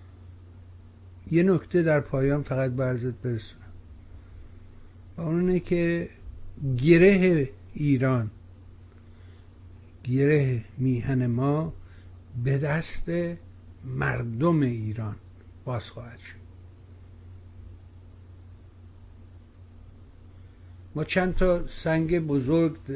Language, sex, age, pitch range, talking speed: Persian, male, 60-79, 90-140 Hz, 70 wpm